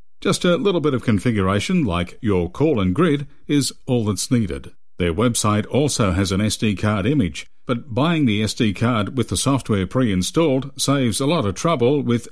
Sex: male